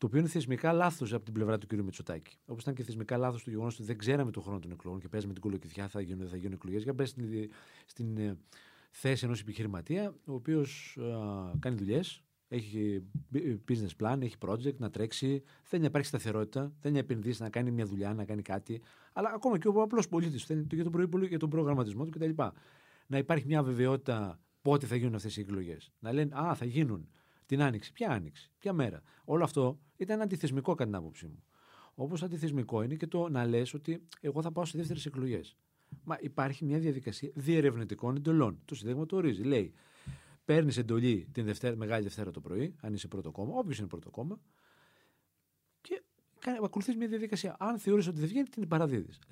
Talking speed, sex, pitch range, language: 195 wpm, male, 105-155 Hz, Greek